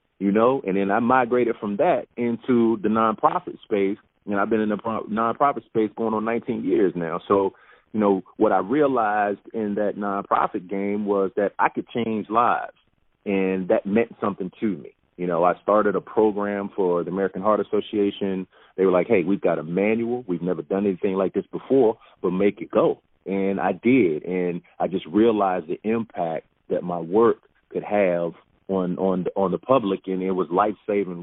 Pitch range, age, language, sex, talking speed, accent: 90-110 Hz, 30-49, English, male, 195 wpm, American